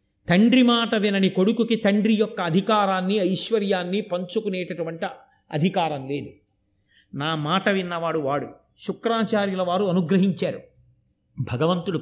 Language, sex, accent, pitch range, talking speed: Telugu, male, native, 185-240 Hz, 95 wpm